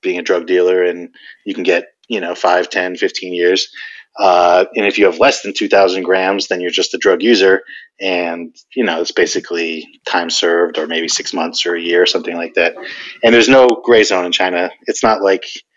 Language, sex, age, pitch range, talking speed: English, male, 30-49, 90-115 Hz, 215 wpm